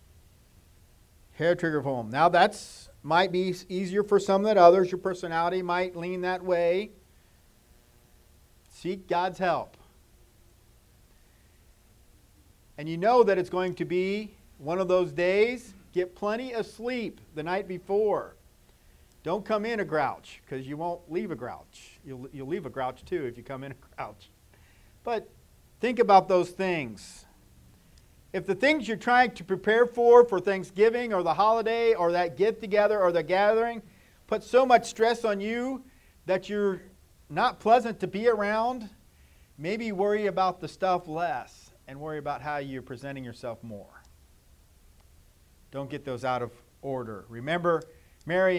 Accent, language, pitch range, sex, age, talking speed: American, English, 135-200 Hz, male, 50-69, 150 wpm